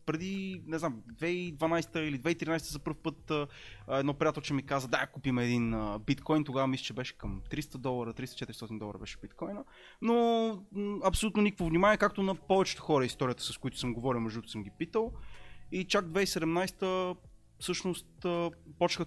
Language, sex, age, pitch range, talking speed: Bulgarian, male, 20-39, 130-185 Hz, 160 wpm